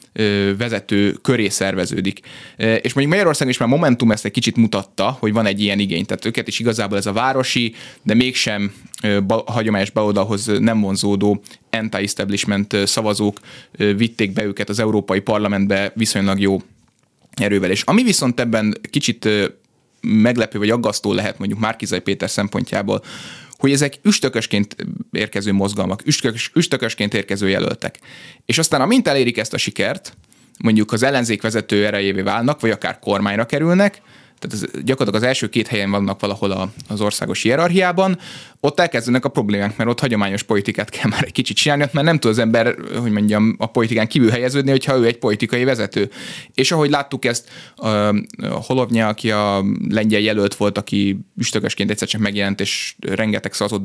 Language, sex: Hungarian, male